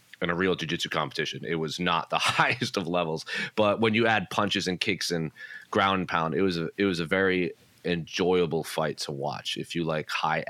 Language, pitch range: English, 85-110 Hz